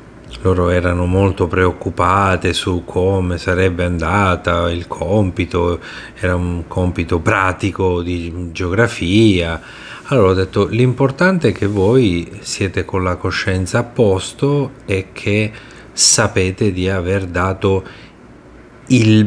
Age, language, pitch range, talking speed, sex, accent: 30-49, Italian, 90-105 Hz, 110 wpm, male, native